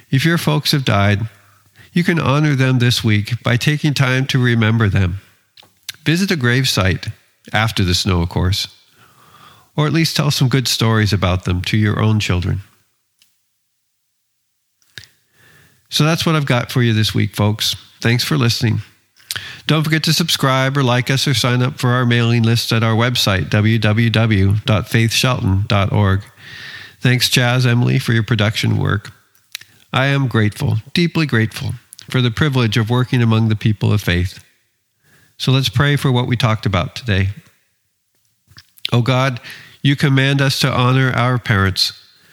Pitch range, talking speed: 105-130 Hz, 155 wpm